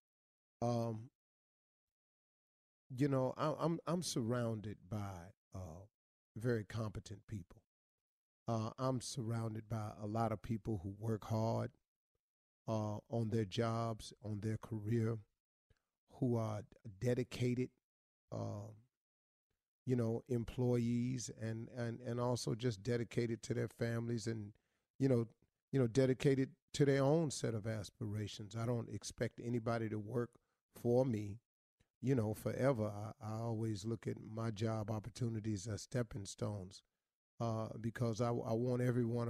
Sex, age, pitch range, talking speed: male, 40-59, 110-120 Hz, 130 wpm